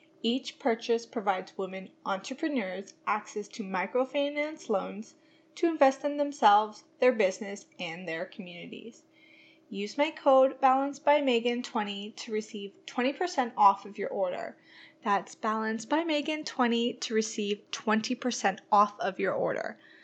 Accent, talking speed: American, 115 wpm